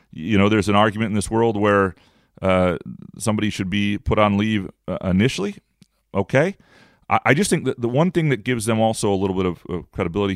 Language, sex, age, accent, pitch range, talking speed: English, male, 30-49, American, 95-115 Hz, 215 wpm